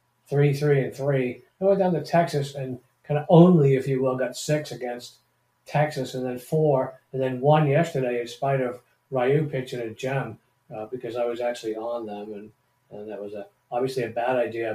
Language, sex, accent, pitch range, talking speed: English, male, American, 120-140 Hz, 205 wpm